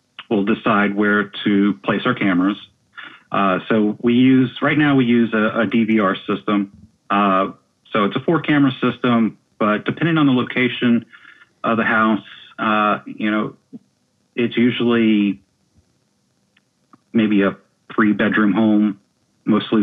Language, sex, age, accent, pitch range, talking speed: English, male, 30-49, American, 95-120 Hz, 130 wpm